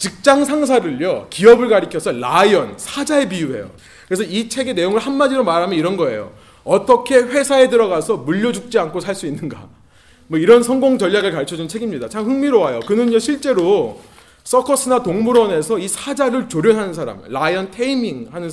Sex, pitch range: male, 195-260 Hz